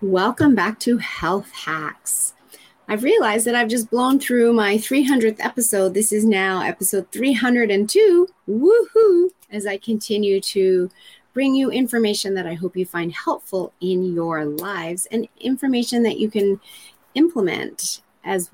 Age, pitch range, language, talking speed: 30-49, 185-235 Hz, English, 140 wpm